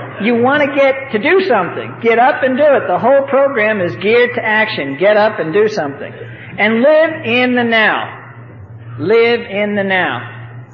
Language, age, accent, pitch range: English, 50-69, American, 165-220 Hz